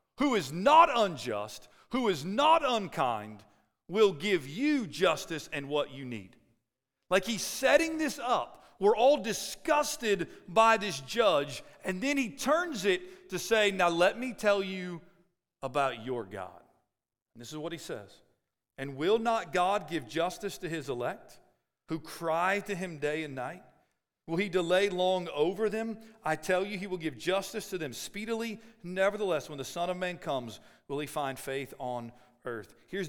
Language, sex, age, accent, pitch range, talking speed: English, male, 40-59, American, 130-205 Hz, 170 wpm